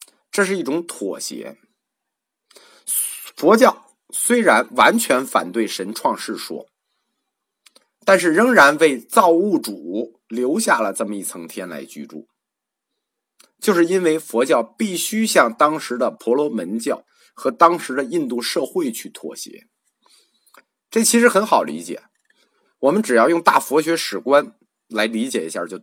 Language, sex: Chinese, male